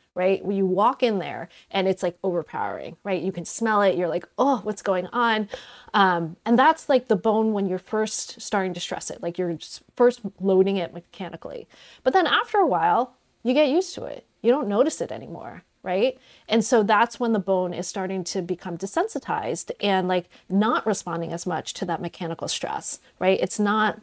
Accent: American